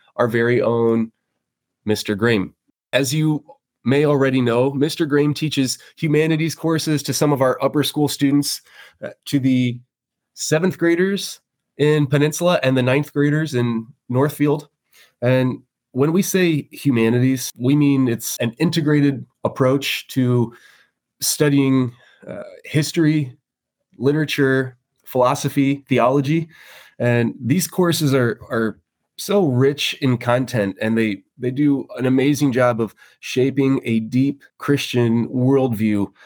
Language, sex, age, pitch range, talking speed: English, male, 20-39, 115-145 Hz, 125 wpm